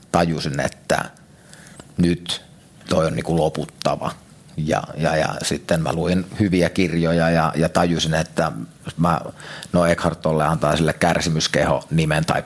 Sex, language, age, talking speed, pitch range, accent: male, Finnish, 30-49, 135 wpm, 75-90 Hz, native